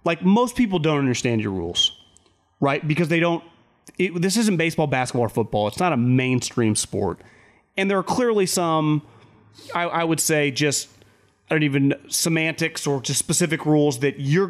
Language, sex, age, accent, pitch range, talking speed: English, male, 30-49, American, 150-230 Hz, 175 wpm